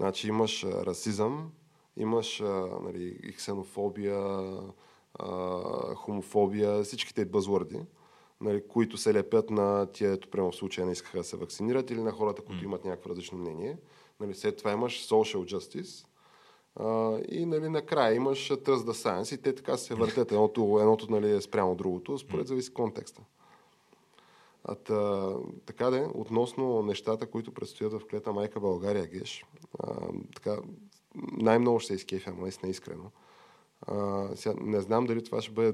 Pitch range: 95-115 Hz